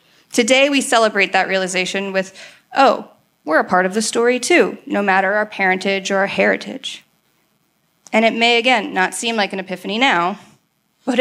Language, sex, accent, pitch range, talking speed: English, female, American, 195-245 Hz, 170 wpm